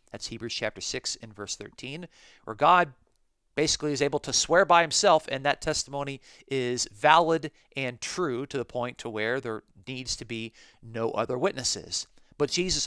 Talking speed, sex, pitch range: 175 wpm, male, 115-145 Hz